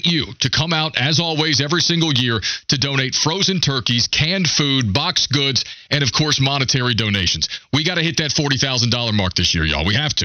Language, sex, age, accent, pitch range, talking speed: English, male, 40-59, American, 125-155 Hz, 205 wpm